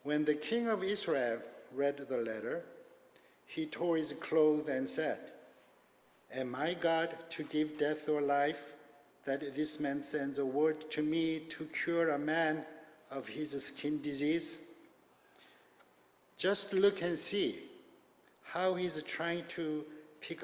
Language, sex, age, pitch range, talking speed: English, male, 60-79, 140-175 Hz, 140 wpm